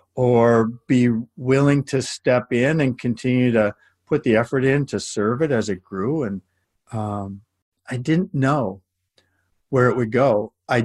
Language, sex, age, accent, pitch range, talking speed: English, male, 50-69, American, 105-130 Hz, 160 wpm